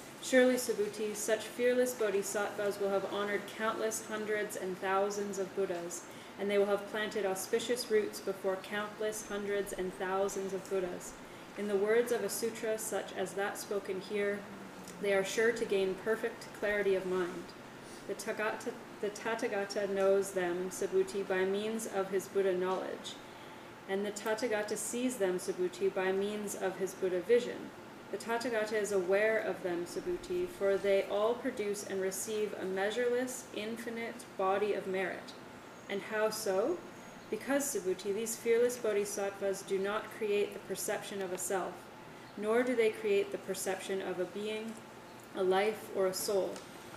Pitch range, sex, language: 195-220 Hz, female, English